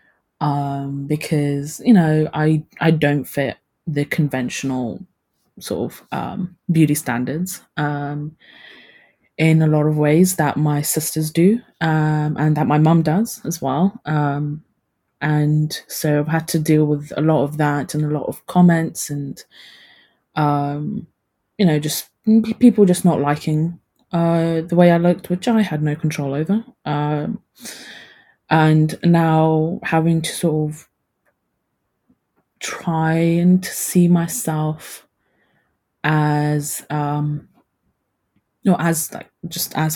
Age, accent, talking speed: 20-39, British, 135 wpm